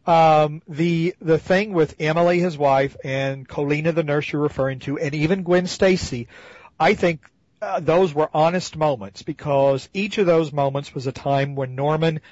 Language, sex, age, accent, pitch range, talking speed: English, male, 50-69, American, 135-165 Hz, 175 wpm